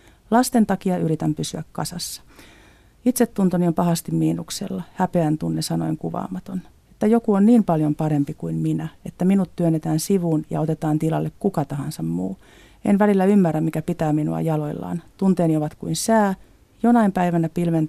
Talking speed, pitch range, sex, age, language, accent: 155 wpm, 155-185 Hz, female, 40-59, Finnish, native